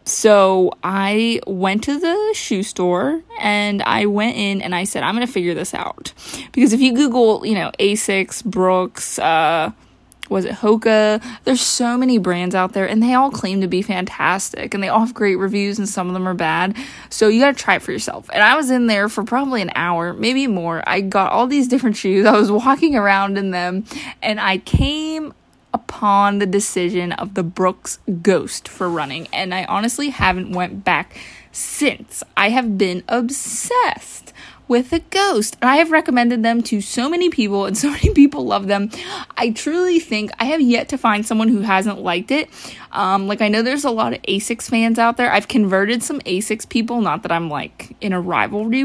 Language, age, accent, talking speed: English, 20-39, American, 205 wpm